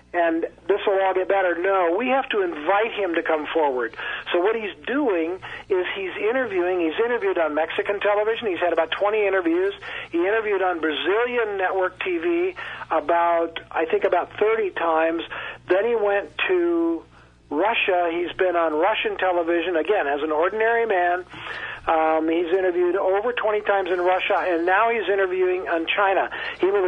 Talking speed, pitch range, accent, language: 165 wpm, 165-230 Hz, American, English